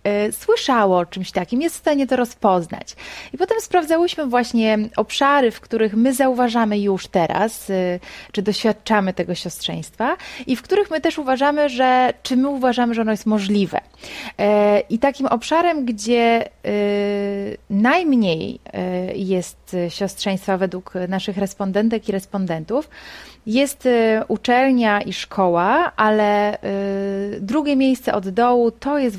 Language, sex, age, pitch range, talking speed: Polish, female, 30-49, 195-250 Hz, 125 wpm